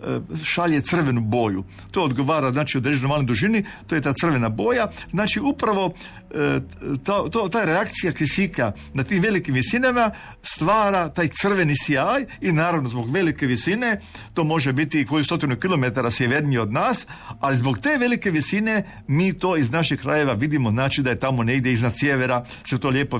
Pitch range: 130-190 Hz